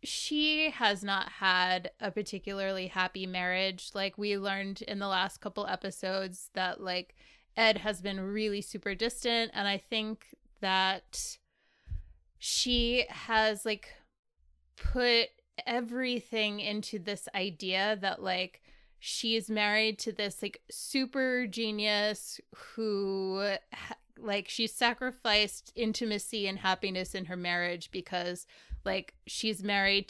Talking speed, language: 120 wpm, English